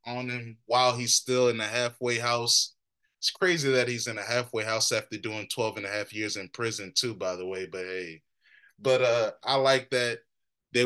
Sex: male